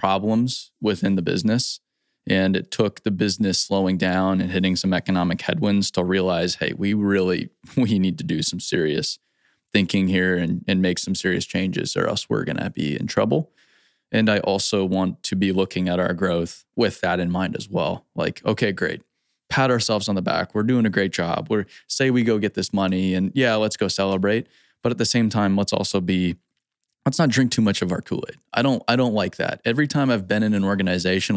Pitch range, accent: 95-110 Hz, American